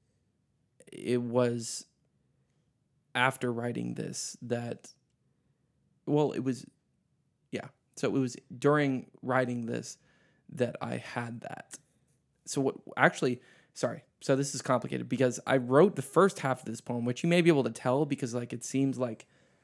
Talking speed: 150 wpm